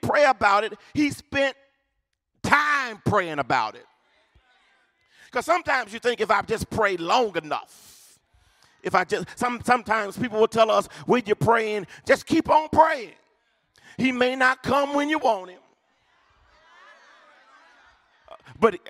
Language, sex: English, male